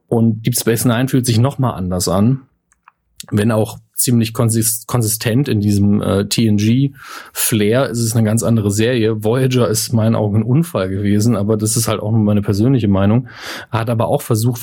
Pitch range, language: 110-125 Hz, German